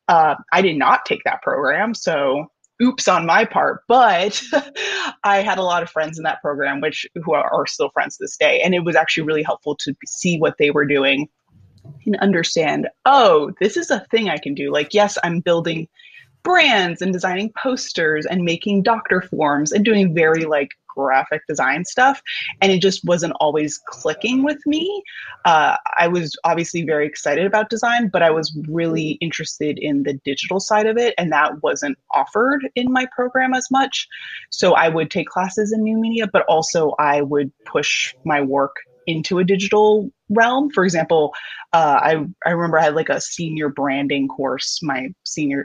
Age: 20-39